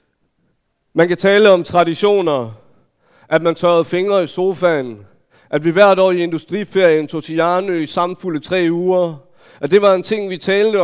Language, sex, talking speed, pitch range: Danish, male, 170 wpm, 150-175 Hz